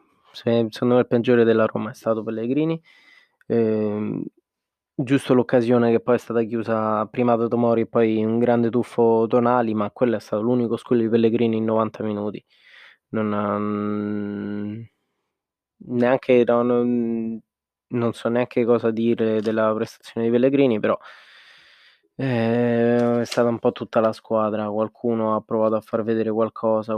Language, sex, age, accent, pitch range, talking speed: Italian, male, 20-39, native, 110-120 Hz, 140 wpm